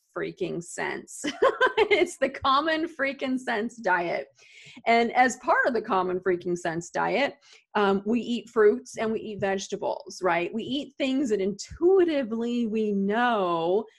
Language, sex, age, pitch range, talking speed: English, female, 30-49, 180-225 Hz, 140 wpm